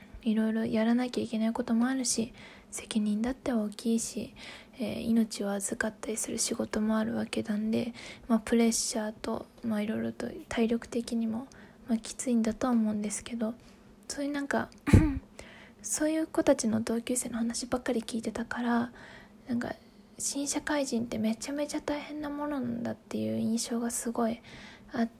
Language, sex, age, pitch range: Japanese, female, 20-39, 220-245 Hz